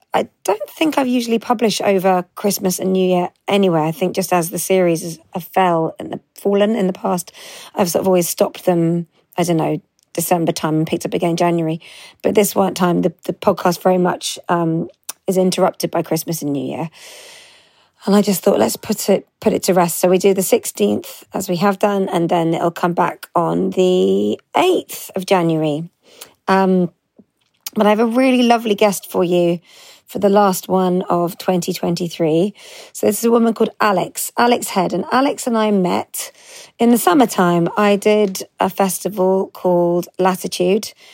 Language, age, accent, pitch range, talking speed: English, 40-59, British, 175-210 Hz, 190 wpm